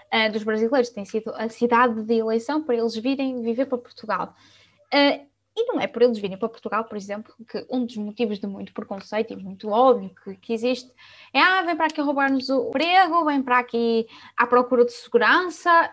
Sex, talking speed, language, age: female, 190 wpm, Portuguese, 10-29